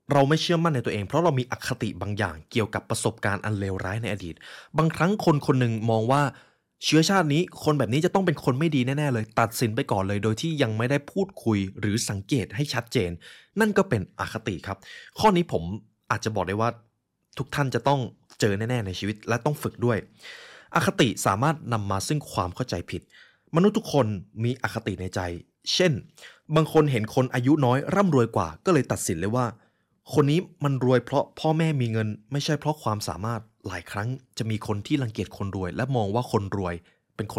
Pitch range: 105-145 Hz